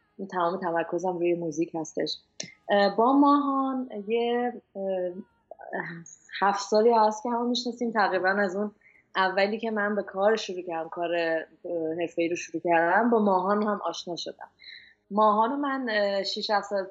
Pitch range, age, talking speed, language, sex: 175-220 Hz, 20-39, 140 wpm, Persian, female